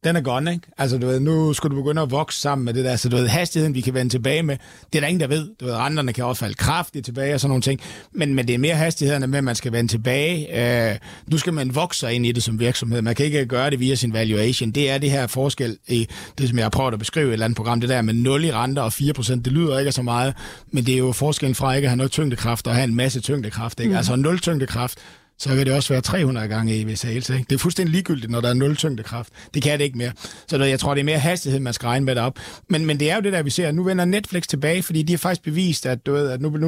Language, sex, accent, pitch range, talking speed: Danish, male, native, 120-155 Hz, 295 wpm